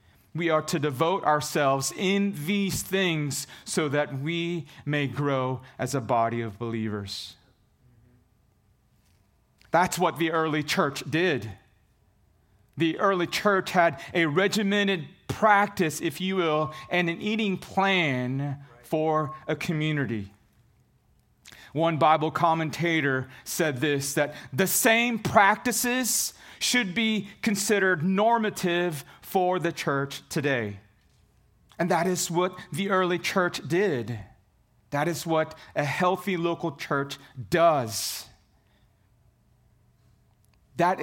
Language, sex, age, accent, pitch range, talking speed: English, male, 40-59, American, 130-185 Hz, 110 wpm